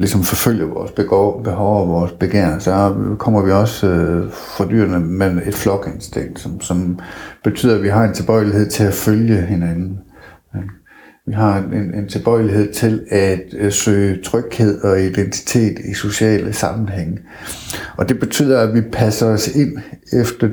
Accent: native